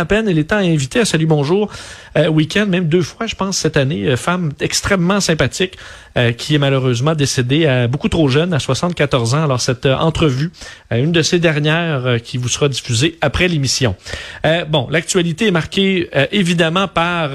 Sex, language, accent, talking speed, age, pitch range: male, French, Canadian, 195 wpm, 40-59, 140-180 Hz